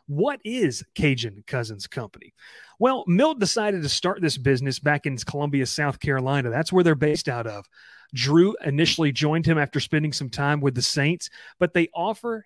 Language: English